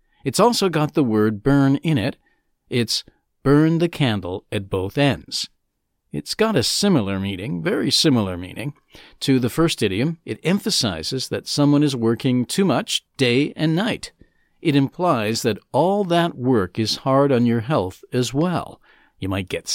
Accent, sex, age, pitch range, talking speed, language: American, male, 50-69, 110-150 Hz, 165 wpm, English